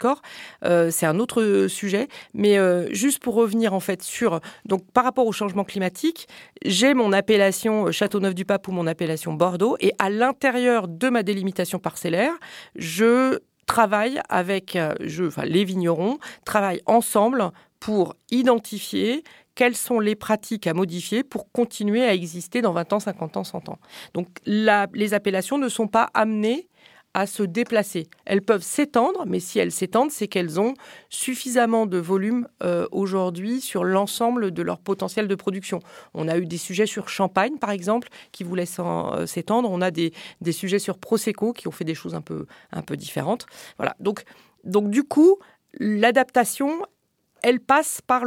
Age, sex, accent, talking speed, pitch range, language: 40-59, female, French, 165 wpm, 185-240 Hz, French